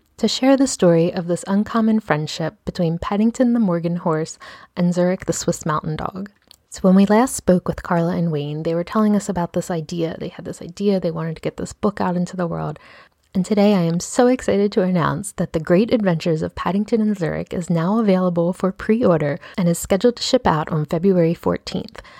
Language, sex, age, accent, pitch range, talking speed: English, female, 20-39, American, 170-215 Hz, 215 wpm